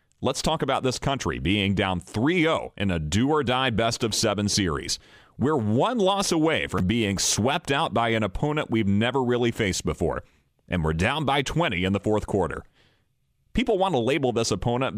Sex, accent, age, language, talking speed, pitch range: male, American, 40-59, English, 175 wpm, 100-140 Hz